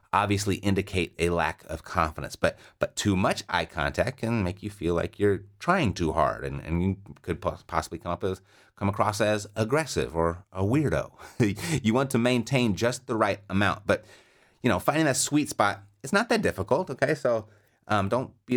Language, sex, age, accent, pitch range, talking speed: English, male, 30-49, American, 85-115 Hz, 195 wpm